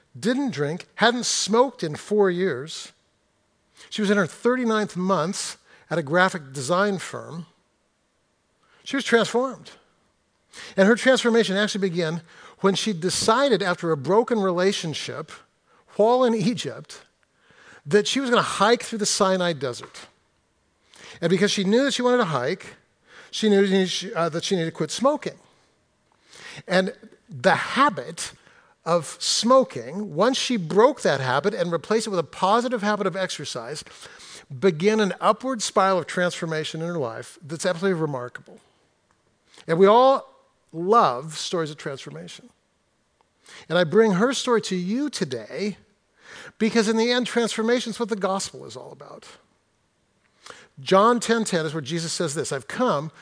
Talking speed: 145 wpm